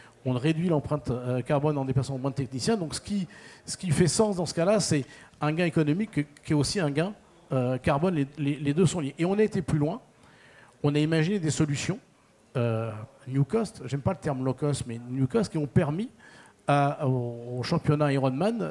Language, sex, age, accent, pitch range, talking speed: French, male, 50-69, French, 130-160 Hz, 210 wpm